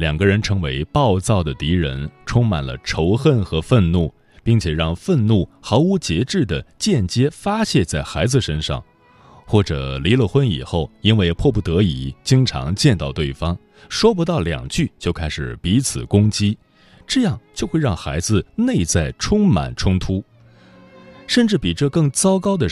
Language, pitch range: Chinese, 80-130 Hz